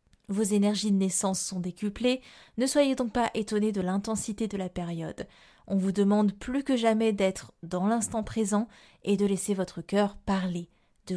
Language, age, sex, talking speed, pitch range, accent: French, 20-39, female, 175 wpm, 185-240 Hz, French